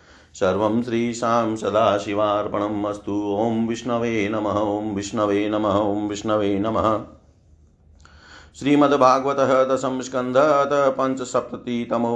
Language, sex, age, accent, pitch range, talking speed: Hindi, male, 50-69, native, 100-125 Hz, 75 wpm